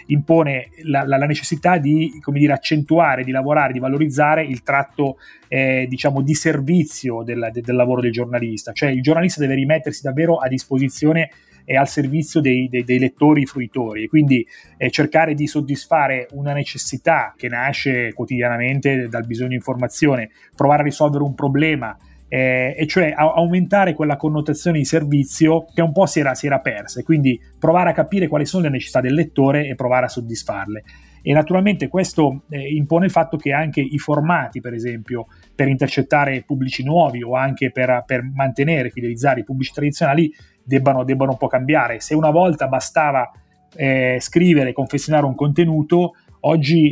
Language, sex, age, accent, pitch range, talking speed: Italian, male, 30-49, native, 130-150 Hz, 170 wpm